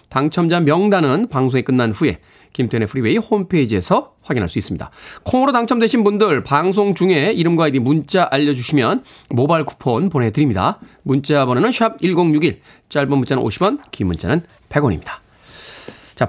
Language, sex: Korean, male